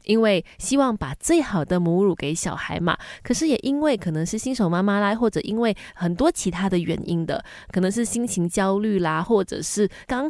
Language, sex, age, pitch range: Chinese, female, 20-39, 170-220 Hz